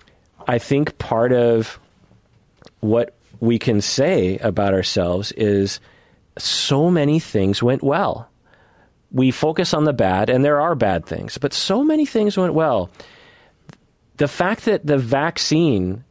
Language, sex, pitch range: English, male, 100-145 Hz